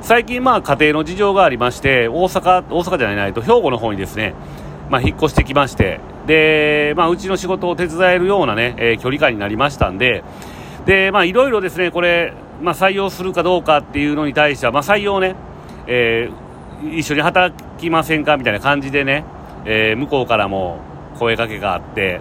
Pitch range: 115-160 Hz